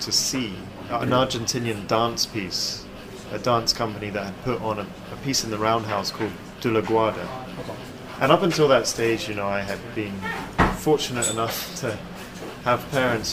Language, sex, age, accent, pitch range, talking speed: English, male, 30-49, British, 105-125 Hz, 170 wpm